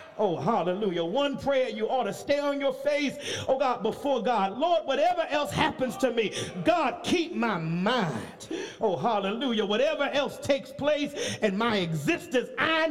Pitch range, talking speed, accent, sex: 185-280 Hz, 165 wpm, American, male